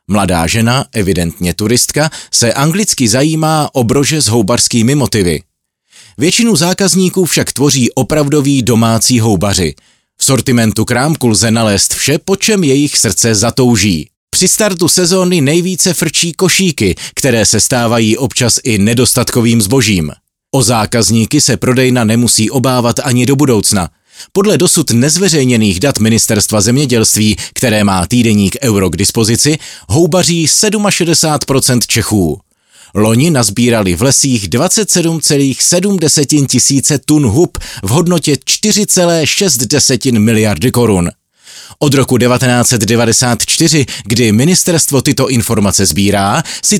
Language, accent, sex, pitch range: Czech, native, male, 110-155 Hz